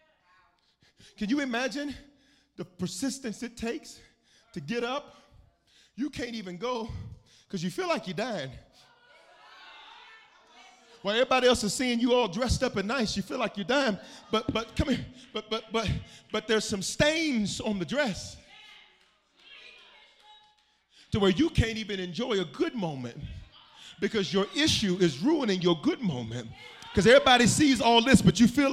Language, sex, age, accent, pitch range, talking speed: English, male, 30-49, American, 185-270 Hz, 160 wpm